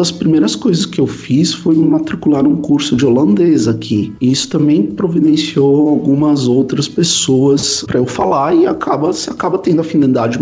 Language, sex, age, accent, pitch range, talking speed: Portuguese, male, 50-69, Brazilian, 135-185 Hz, 165 wpm